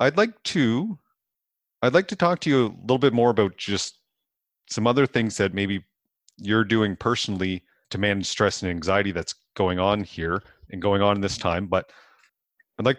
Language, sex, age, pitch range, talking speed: English, male, 30-49, 95-120 Hz, 185 wpm